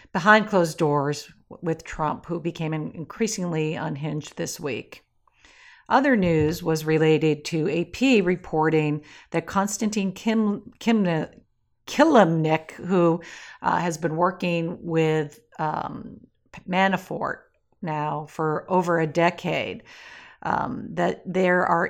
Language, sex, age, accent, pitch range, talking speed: English, female, 50-69, American, 155-185 Hz, 110 wpm